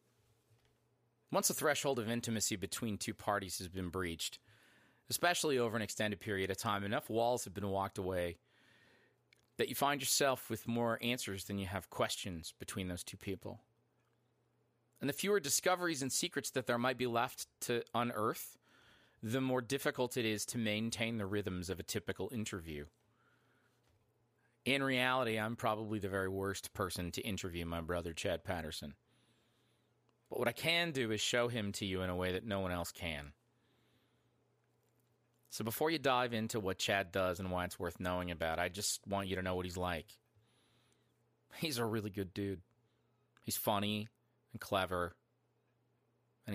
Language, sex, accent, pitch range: English, male, American, 95-120 Hz